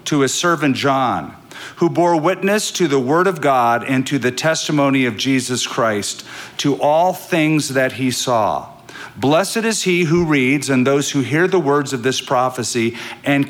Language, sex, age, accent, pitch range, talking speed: English, male, 50-69, American, 125-150 Hz, 180 wpm